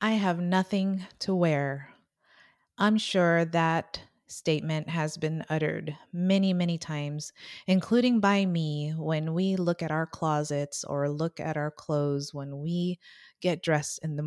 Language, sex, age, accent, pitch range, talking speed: English, female, 30-49, American, 155-195 Hz, 145 wpm